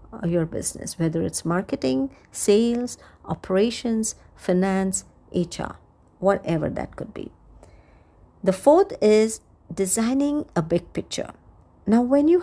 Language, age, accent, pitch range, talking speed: English, 50-69, Indian, 185-250 Hz, 110 wpm